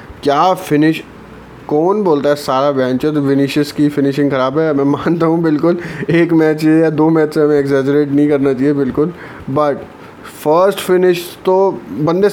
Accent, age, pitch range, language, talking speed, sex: native, 20-39, 145-180 Hz, Hindi, 160 wpm, male